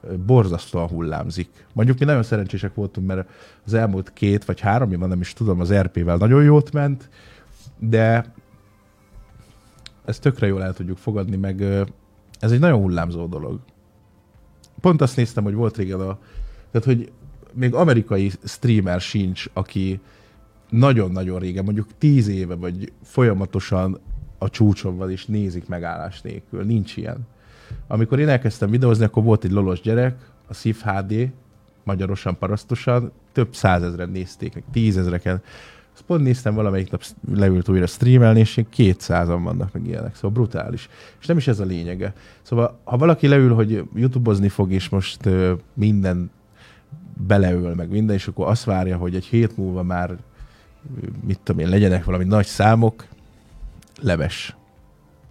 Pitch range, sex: 95-115 Hz, male